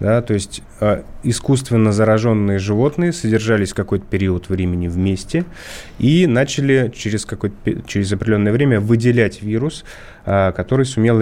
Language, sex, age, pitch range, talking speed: Russian, male, 20-39, 100-125 Hz, 130 wpm